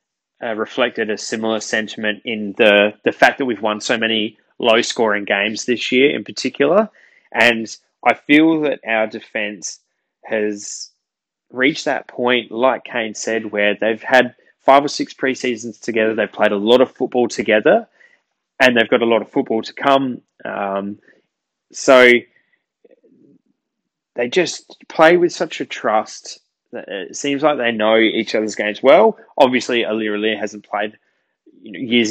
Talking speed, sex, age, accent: 150 wpm, male, 20-39, Australian